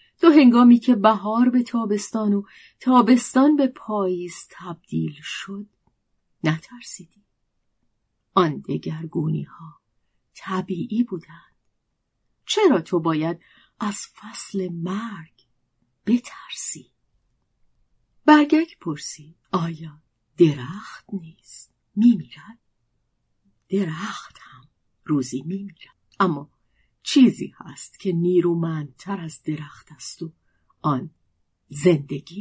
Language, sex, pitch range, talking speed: Persian, female, 155-215 Hz, 80 wpm